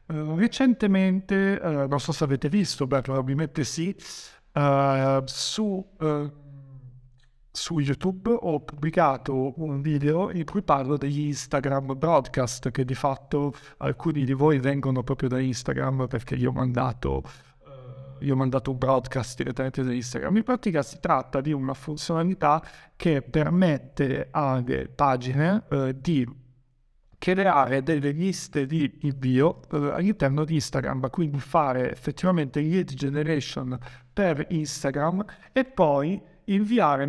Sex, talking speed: male, 125 wpm